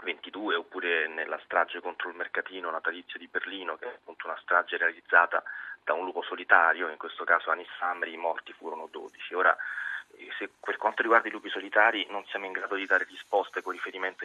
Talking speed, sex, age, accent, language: 190 wpm, male, 20-39, native, Italian